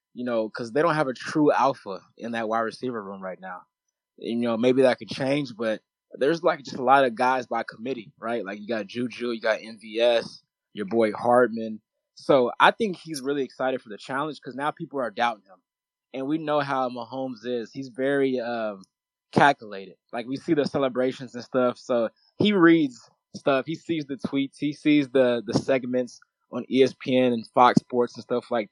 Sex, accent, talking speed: male, American, 200 wpm